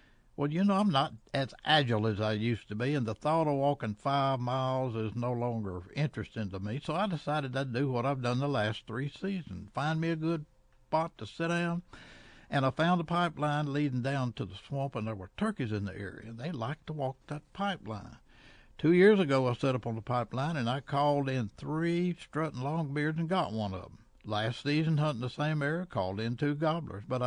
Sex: male